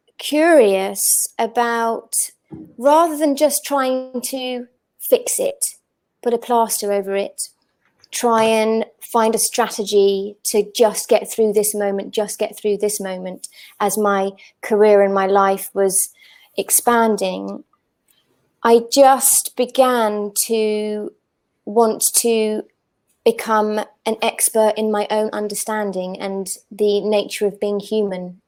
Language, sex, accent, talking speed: English, female, British, 120 wpm